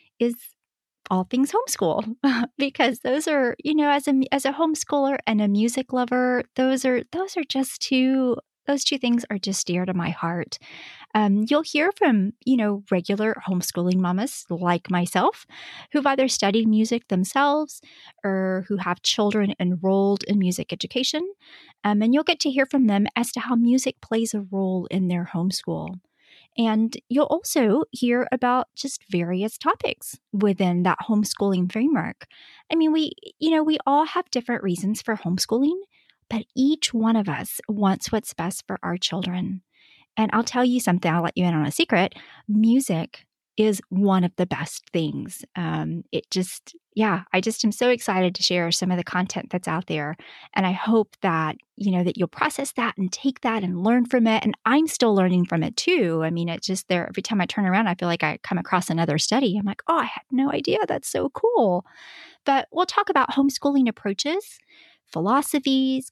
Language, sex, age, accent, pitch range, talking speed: English, female, 30-49, American, 185-270 Hz, 185 wpm